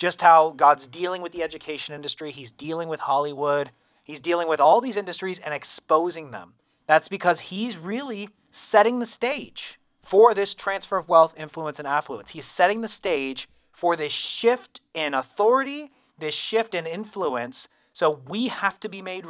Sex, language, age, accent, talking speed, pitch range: male, English, 30-49, American, 170 wpm, 150-215 Hz